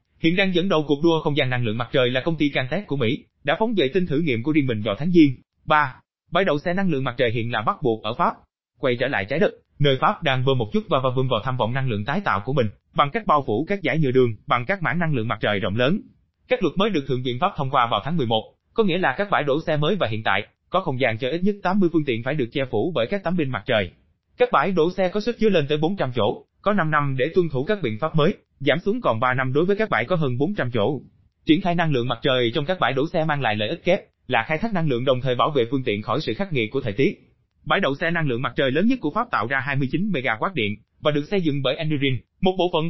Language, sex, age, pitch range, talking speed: Vietnamese, male, 20-39, 125-175 Hz, 305 wpm